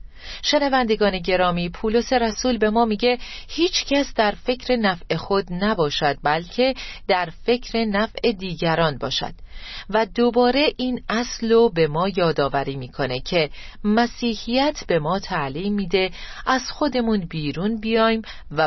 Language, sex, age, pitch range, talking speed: Persian, female, 40-59, 155-230 Hz, 130 wpm